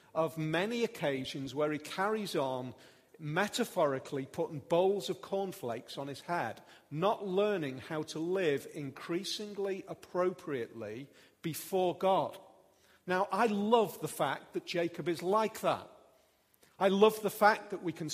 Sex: male